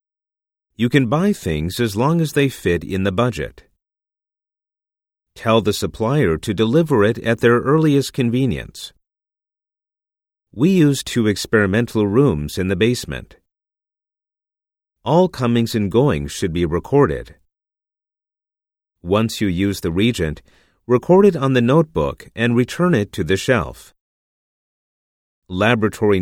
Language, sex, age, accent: Japanese, male, 40-59, American